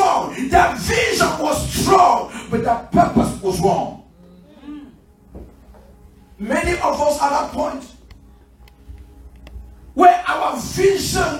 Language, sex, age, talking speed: English, male, 40-59, 100 wpm